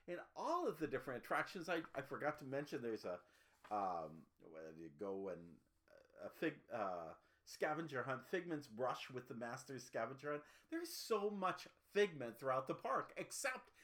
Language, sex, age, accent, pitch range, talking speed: English, male, 50-69, American, 115-175 Hz, 165 wpm